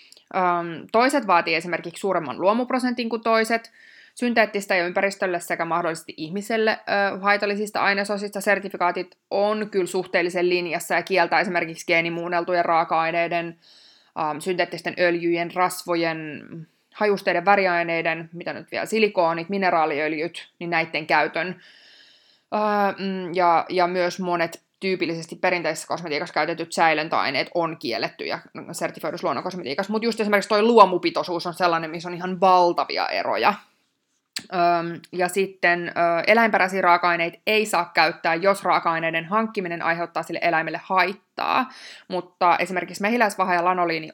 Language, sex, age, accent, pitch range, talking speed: Finnish, female, 20-39, native, 170-200 Hz, 110 wpm